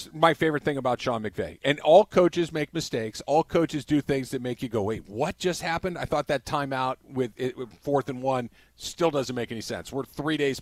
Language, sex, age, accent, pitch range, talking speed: English, male, 40-59, American, 125-160 Hz, 225 wpm